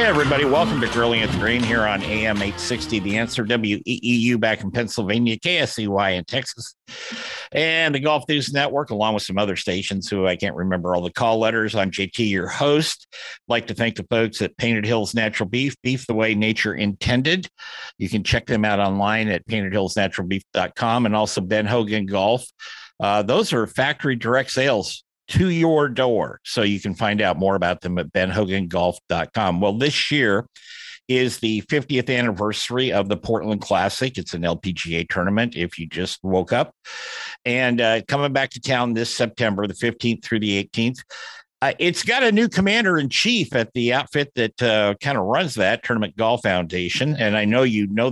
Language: English